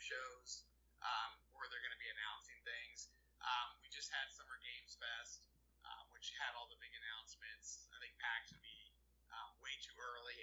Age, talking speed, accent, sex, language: 30-49, 185 wpm, American, male, English